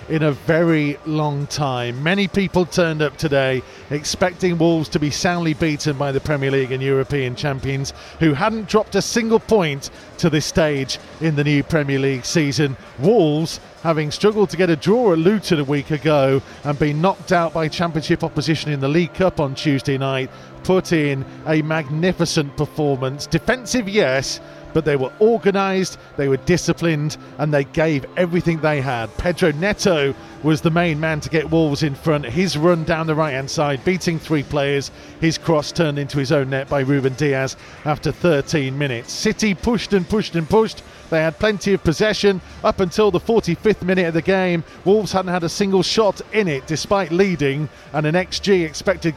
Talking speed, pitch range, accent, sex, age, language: 185 wpm, 145-180 Hz, British, male, 40-59, English